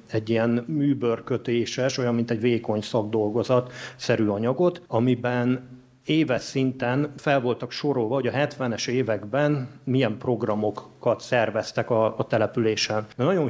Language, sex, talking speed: Hungarian, male, 125 wpm